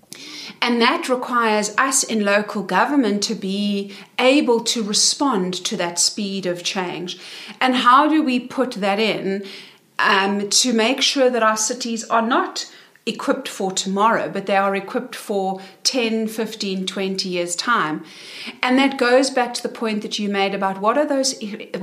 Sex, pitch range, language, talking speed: female, 190-240 Hz, English, 165 wpm